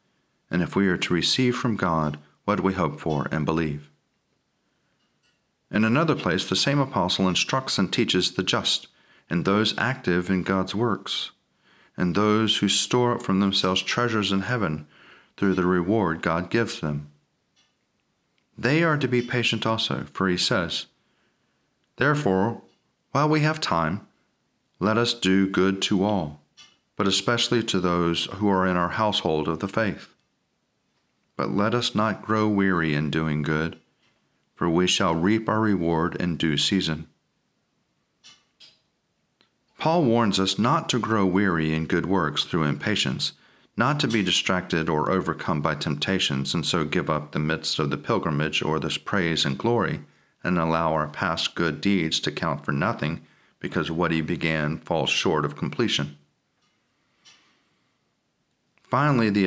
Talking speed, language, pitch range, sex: 150 wpm, English, 80-110 Hz, male